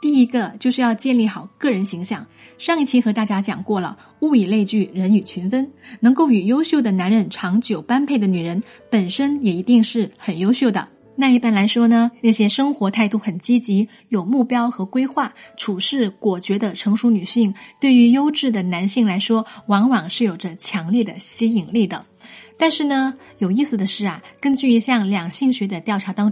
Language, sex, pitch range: Chinese, female, 200-255 Hz